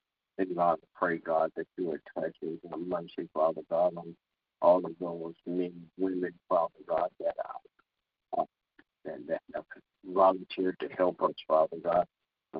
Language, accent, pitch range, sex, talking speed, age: English, American, 85-95 Hz, male, 135 wpm, 50-69